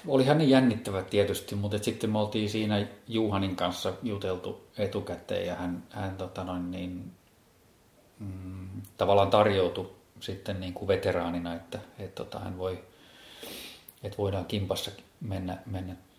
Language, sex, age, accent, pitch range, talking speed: Finnish, male, 30-49, native, 90-100 Hz, 135 wpm